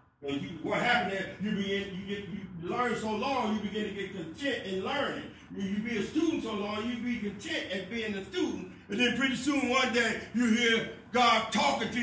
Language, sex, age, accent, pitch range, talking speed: English, male, 50-69, American, 210-255 Hz, 220 wpm